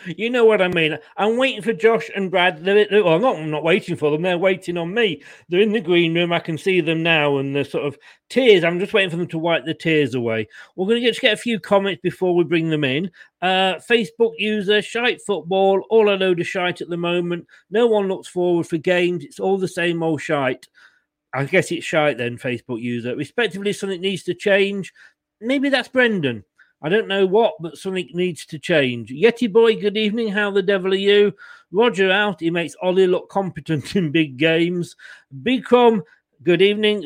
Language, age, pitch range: English, 40-59, 165-210 Hz